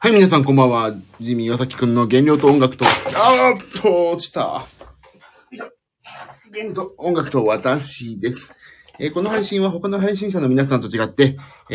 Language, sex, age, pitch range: Japanese, male, 30-49, 115-155 Hz